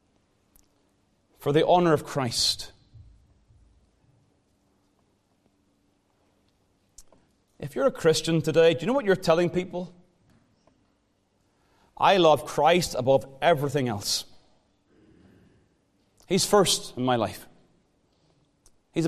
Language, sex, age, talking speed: English, male, 30-49, 90 wpm